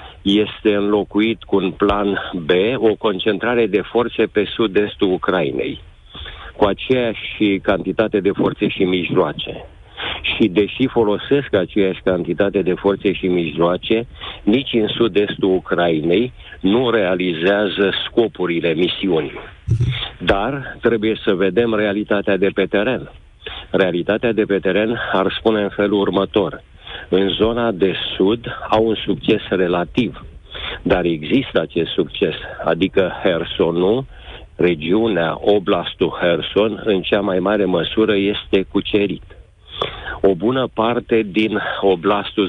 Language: Romanian